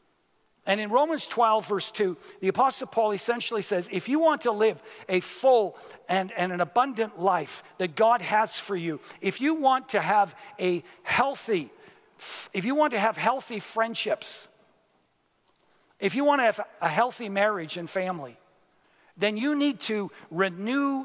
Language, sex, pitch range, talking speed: English, male, 185-235 Hz, 165 wpm